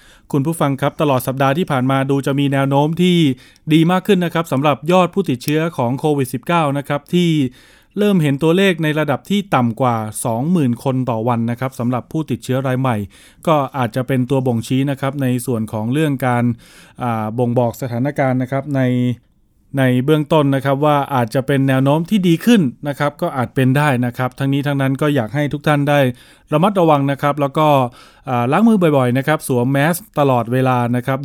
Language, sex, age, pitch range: Thai, male, 20-39, 120-145 Hz